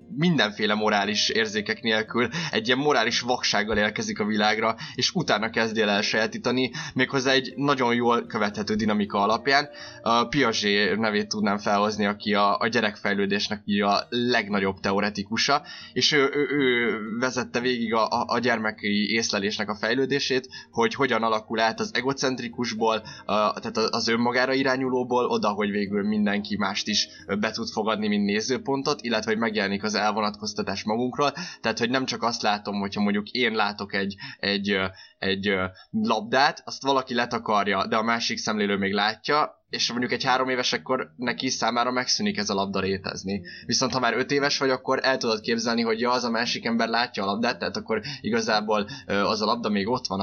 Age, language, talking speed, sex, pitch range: 20-39, Hungarian, 160 wpm, male, 105-130 Hz